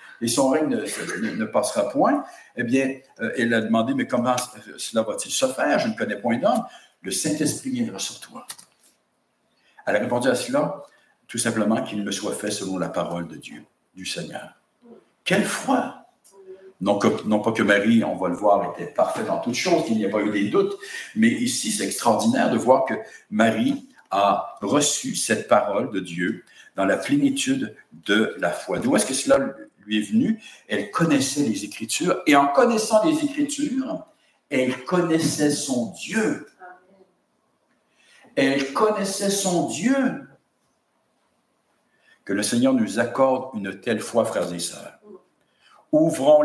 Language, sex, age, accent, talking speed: English, male, 60-79, French, 165 wpm